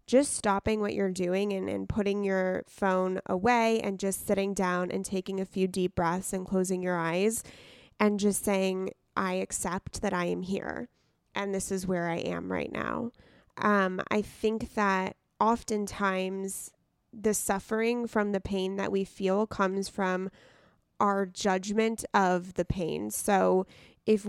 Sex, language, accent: female, English, American